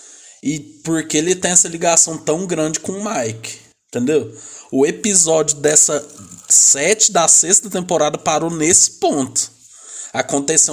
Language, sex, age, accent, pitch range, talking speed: Portuguese, male, 20-39, Brazilian, 130-165 Hz, 130 wpm